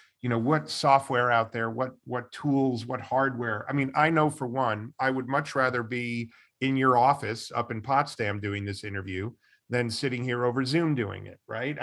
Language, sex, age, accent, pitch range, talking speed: English, male, 40-59, American, 115-140 Hz, 200 wpm